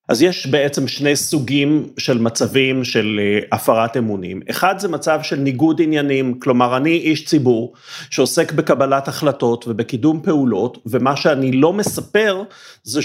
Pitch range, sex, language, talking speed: 130-175 Hz, male, Hebrew, 140 wpm